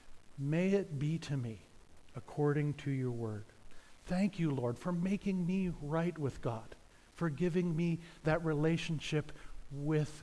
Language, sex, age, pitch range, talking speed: English, male, 50-69, 135-185 Hz, 140 wpm